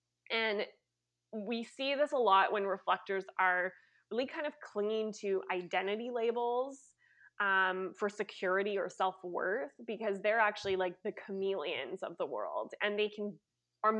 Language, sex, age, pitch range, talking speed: English, female, 20-39, 185-230 Hz, 145 wpm